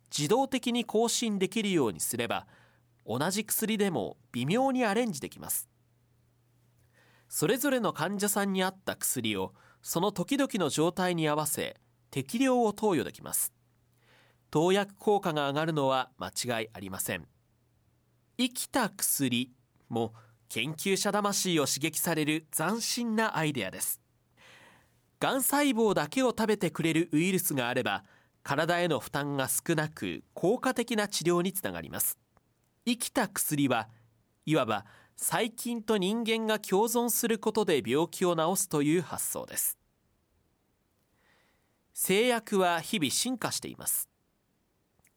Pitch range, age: 130-220 Hz, 30-49